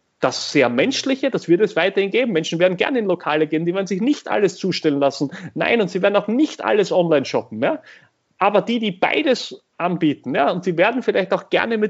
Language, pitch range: German, 155-205 Hz